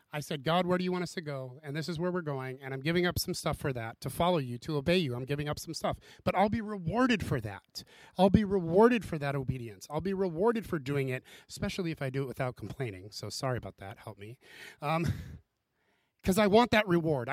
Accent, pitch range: American, 135-180 Hz